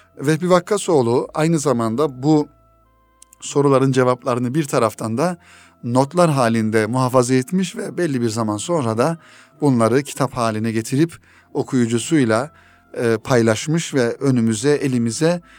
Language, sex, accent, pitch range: Turkish, male, native, 120-155 Hz